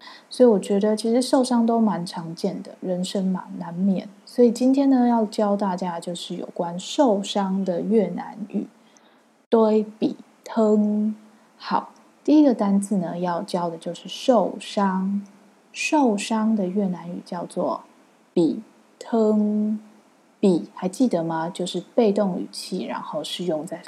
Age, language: 20-39, Chinese